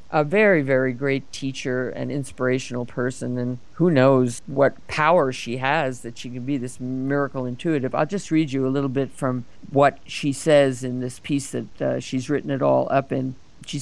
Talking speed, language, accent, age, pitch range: 195 wpm, English, American, 50-69, 125-150 Hz